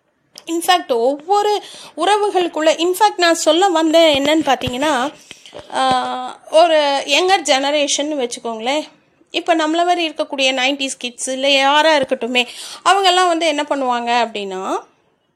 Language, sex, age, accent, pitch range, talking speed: Tamil, female, 30-49, native, 260-335 Hz, 105 wpm